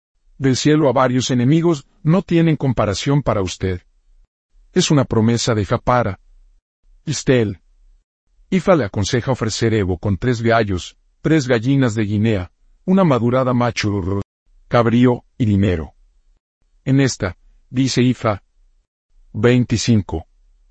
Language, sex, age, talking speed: Spanish, male, 50-69, 120 wpm